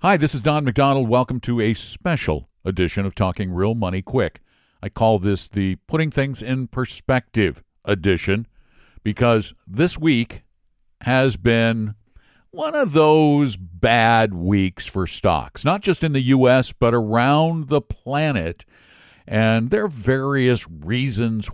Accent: American